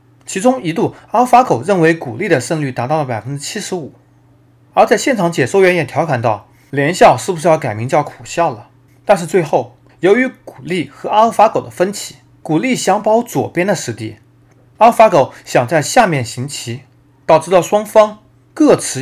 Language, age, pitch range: Chinese, 30-49, 125-175 Hz